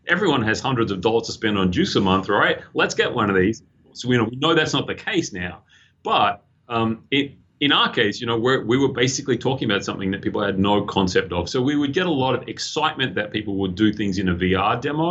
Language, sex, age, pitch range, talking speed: English, male, 30-49, 95-120 Hz, 240 wpm